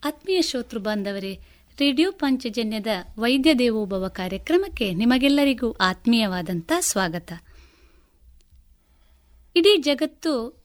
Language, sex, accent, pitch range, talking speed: Kannada, female, native, 195-285 Hz, 75 wpm